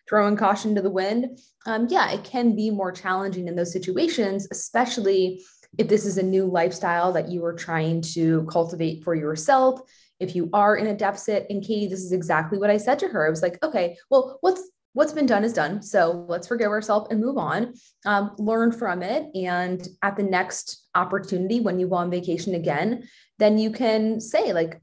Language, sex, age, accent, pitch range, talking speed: English, female, 20-39, American, 175-220 Hz, 205 wpm